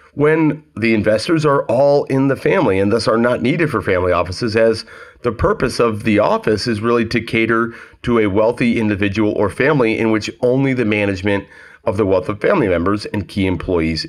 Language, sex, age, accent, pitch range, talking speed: English, male, 30-49, American, 95-135 Hz, 195 wpm